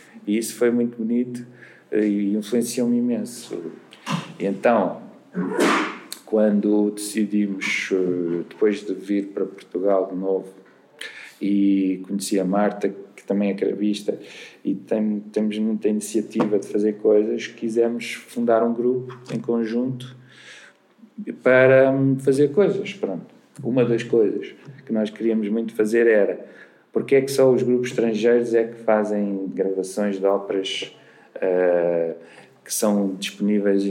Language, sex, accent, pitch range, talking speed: Portuguese, male, Portuguese, 105-125 Hz, 120 wpm